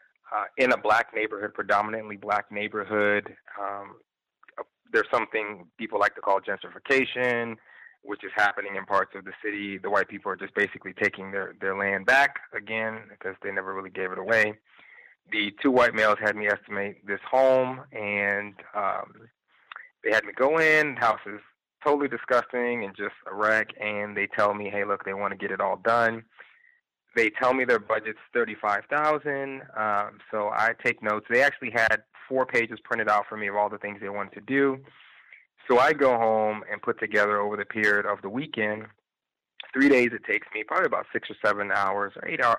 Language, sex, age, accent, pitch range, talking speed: English, male, 20-39, American, 100-115 Hz, 190 wpm